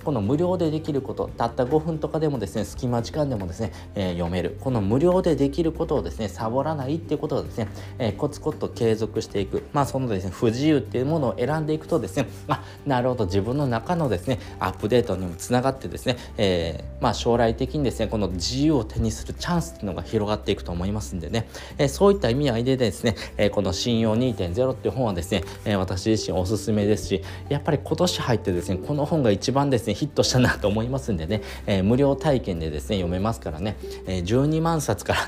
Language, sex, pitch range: Japanese, male, 95-130 Hz